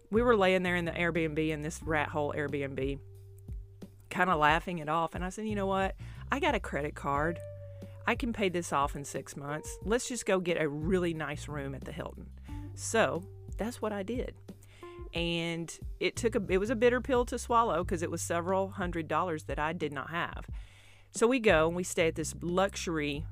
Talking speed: 215 wpm